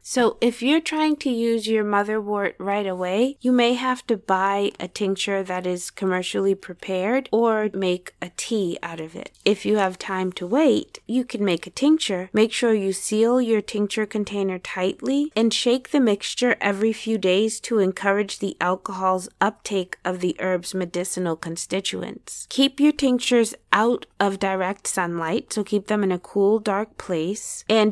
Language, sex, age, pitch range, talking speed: English, female, 20-39, 190-235 Hz, 170 wpm